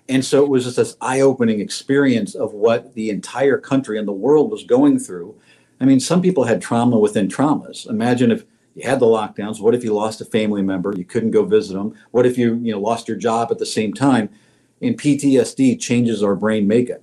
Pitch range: 110-145 Hz